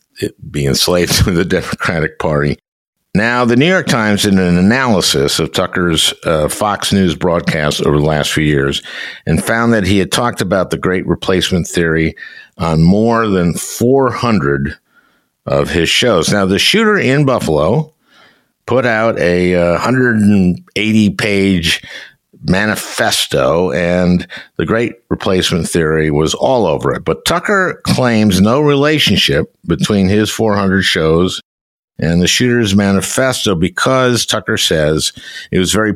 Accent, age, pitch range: American, 60-79, 85-120 Hz